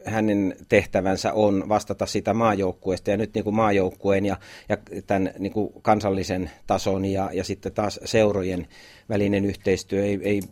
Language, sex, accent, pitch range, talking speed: Finnish, male, native, 95-110 Hz, 150 wpm